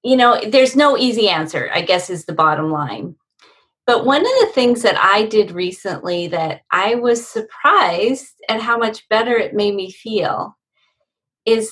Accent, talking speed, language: American, 175 wpm, English